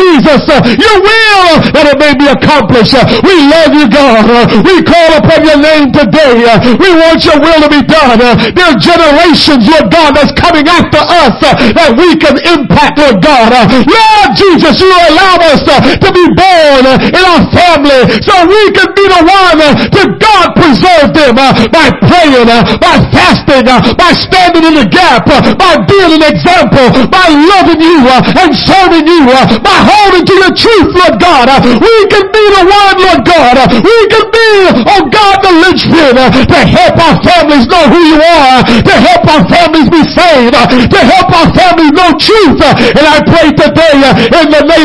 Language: English